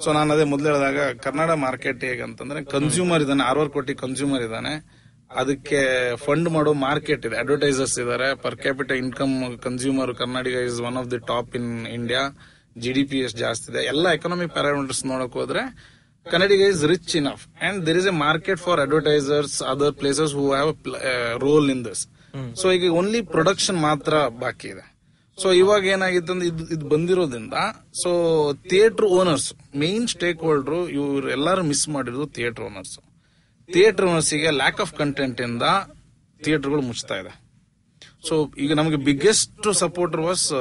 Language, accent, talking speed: Kannada, native, 150 wpm